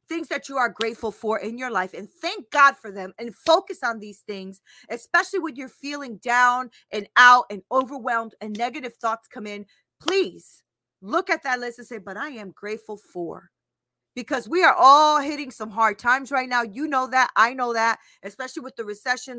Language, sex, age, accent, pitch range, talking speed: English, female, 30-49, American, 200-265 Hz, 200 wpm